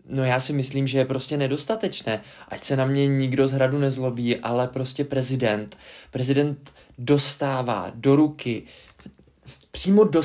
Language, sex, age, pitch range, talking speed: Czech, male, 20-39, 135-170 Hz, 145 wpm